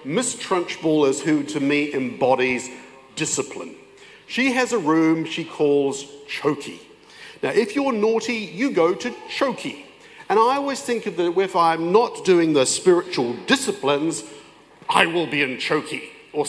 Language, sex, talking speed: English, male, 155 wpm